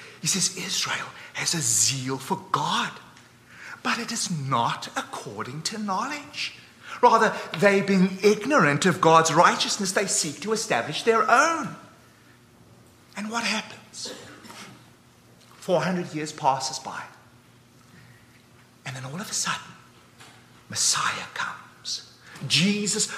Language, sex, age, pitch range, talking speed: English, male, 30-49, 150-220 Hz, 115 wpm